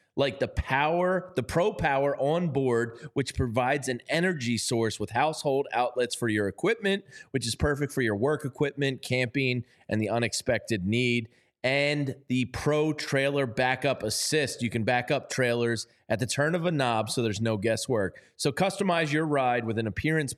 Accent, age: American, 30-49